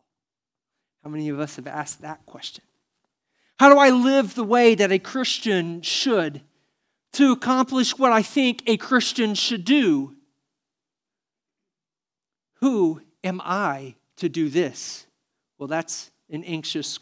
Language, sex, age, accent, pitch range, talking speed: English, male, 40-59, American, 150-215 Hz, 130 wpm